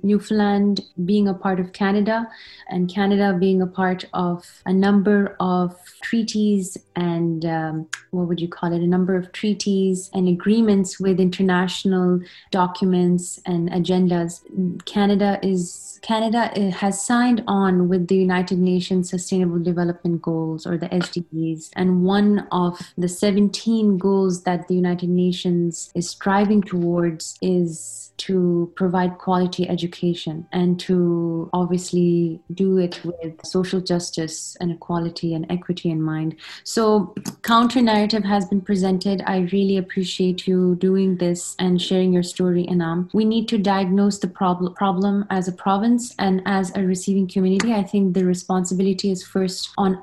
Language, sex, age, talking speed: English, female, 20-39, 145 wpm